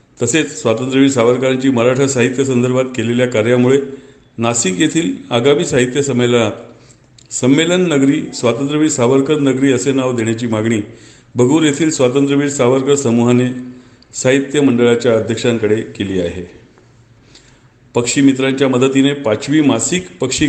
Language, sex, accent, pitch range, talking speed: Marathi, male, native, 120-135 Hz, 110 wpm